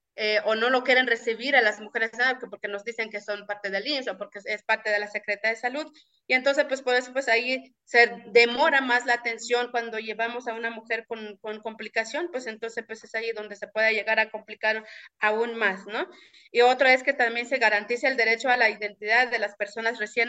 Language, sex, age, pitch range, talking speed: Spanish, female, 30-49, 220-255 Hz, 225 wpm